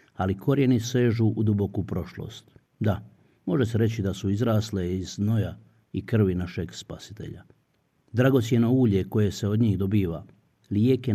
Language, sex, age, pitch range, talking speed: Croatian, male, 50-69, 100-120 Hz, 150 wpm